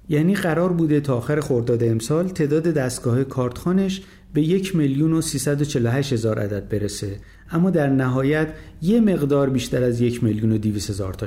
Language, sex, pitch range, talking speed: Persian, male, 115-155 Hz, 150 wpm